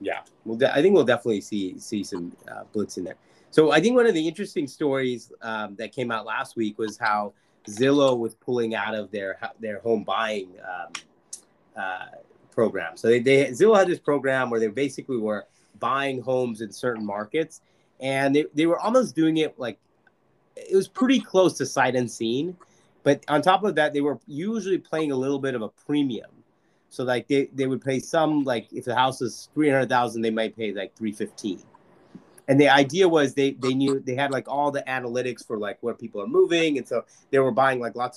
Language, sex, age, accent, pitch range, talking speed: English, male, 30-49, American, 120-145 Hz, 210 wpm